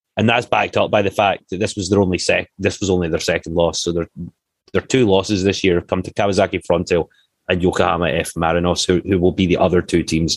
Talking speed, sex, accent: 225 wpm, male, British